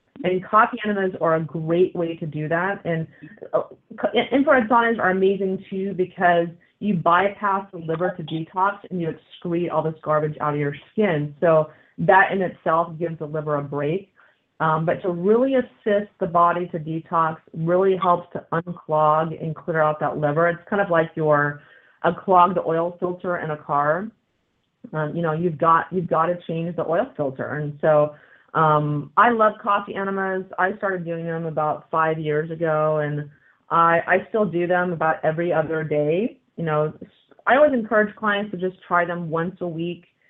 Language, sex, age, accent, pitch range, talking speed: English, female, 30-49, American, 155-185 Hz, 180 wpm